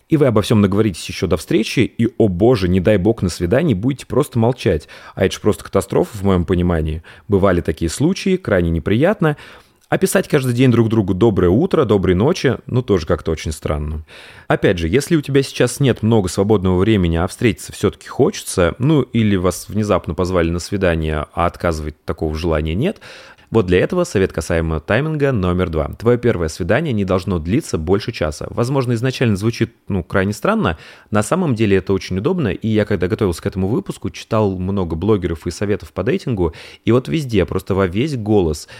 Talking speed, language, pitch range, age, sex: 195 wpm, Russian, 90-120 Hz, 30-49, male